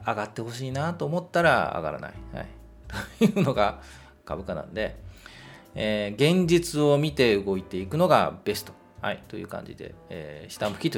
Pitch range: 100-145 Hz